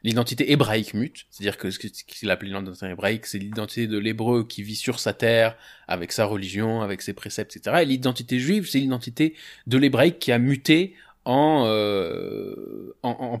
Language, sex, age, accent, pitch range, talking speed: French, male, 20-39, French, 110-140 Hz, 180 wpm